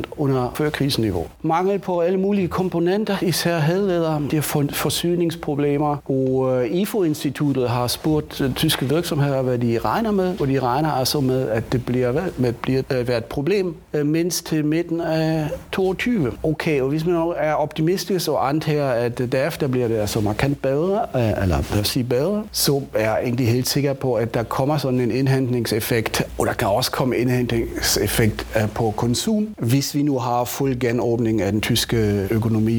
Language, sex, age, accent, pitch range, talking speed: Danish, male, 40-59, German, 110-150 Hz, 180 wpm